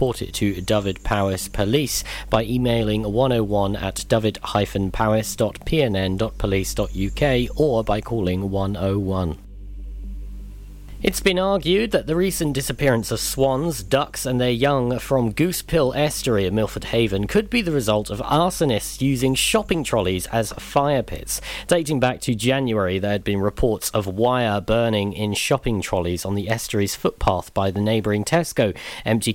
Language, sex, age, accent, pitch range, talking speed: English, male, 40-59, British, 100-135 Hz, 155 wpm